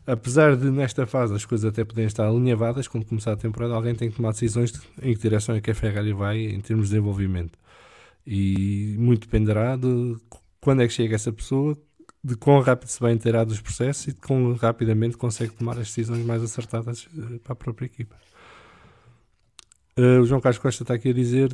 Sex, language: male, English